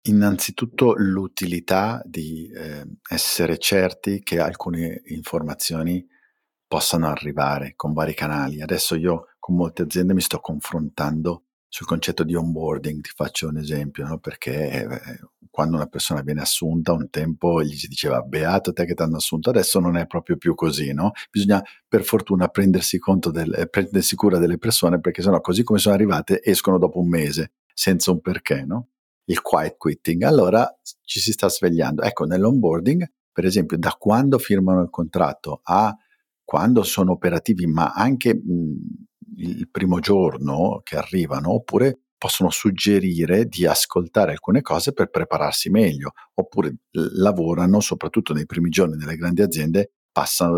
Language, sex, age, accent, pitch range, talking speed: Italian, male, 50-69, native, 80-100 Hz, 155 wpm